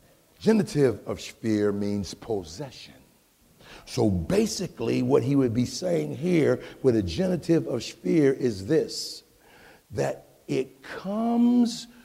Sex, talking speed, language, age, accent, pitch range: male, 115 wpm, English, 60-79, American, 130-205 Hz